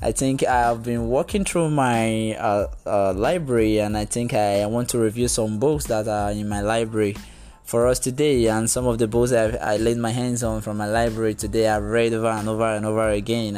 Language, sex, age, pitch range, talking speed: English, male, 20-39, 110-125 Hz, 230 wpm